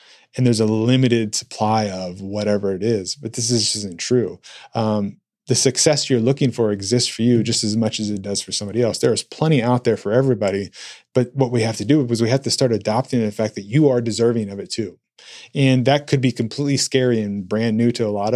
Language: English